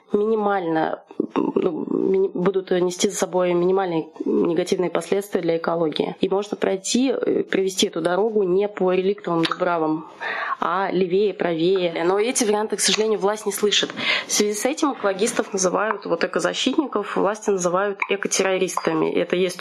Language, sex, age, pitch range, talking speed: Russian, female, 20-39, 180-220 Hz, 135 wpm